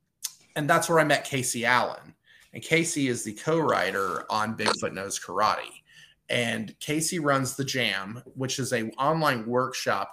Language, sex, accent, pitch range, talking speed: English, male, American, 125-145 Hz, 155 wpm